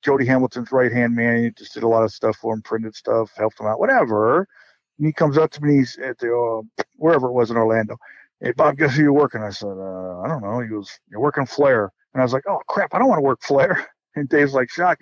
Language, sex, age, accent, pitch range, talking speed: English, male, 50-69, American, 120-180 Hz, 270 wpm